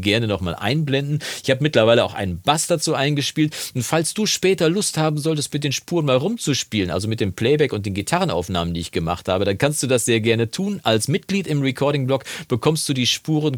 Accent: German